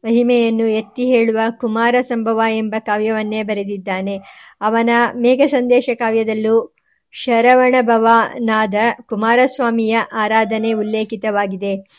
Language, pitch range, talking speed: Kannada, 220-240 Hz, 75 wpm